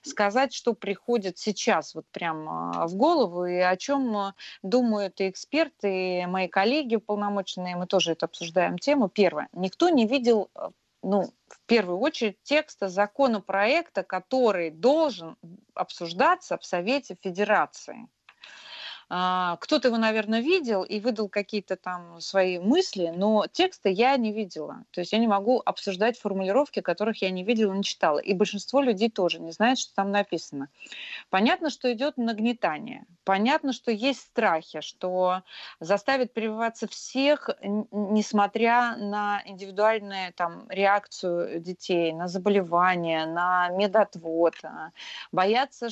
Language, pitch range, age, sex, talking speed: Russian, 185-235 Hz, 30-49, female, 130 wpm